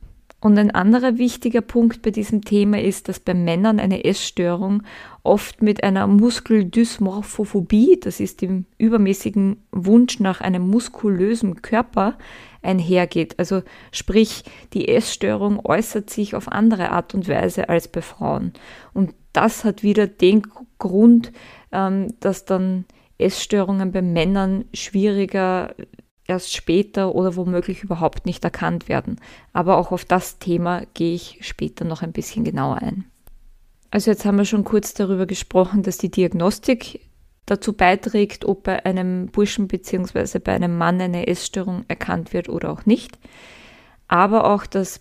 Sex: female